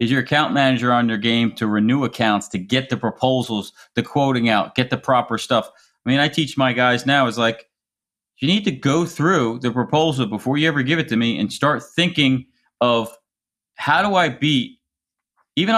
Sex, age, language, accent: male, 40-59, English, American